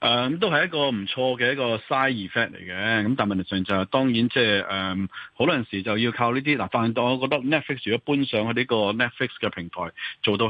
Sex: male